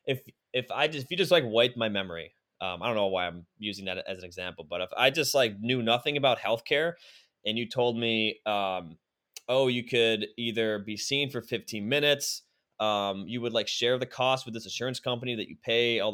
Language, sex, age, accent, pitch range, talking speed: English, male, 20-39, American, 100-125 Hz, 225 wpm